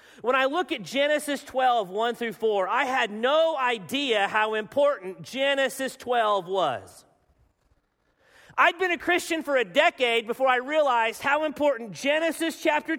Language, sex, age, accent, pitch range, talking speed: English, male, 40-59, American, 205-320 Hz, 150 wpm